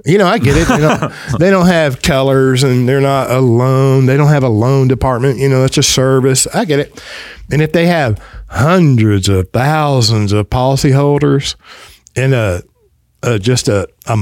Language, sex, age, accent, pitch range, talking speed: English, male, 50-69, American, 115-140 Hz, 185 wpm